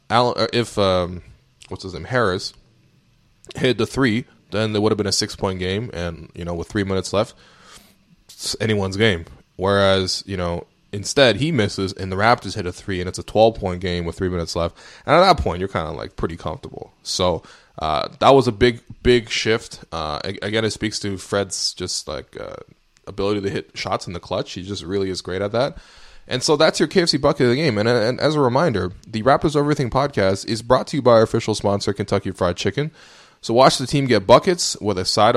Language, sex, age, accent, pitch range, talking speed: English, male, 20-39, American, 95-120 Hz, 220 wpm